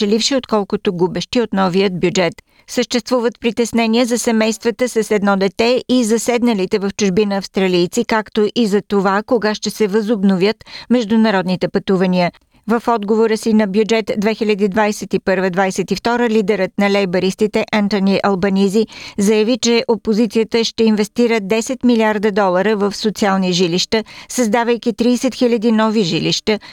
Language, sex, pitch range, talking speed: Bulgarian, female, 170-225 Hz, 125 wpm